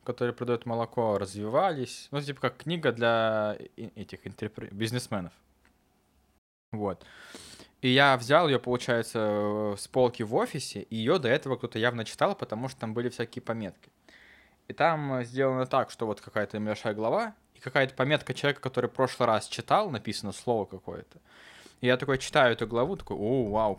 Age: 20-39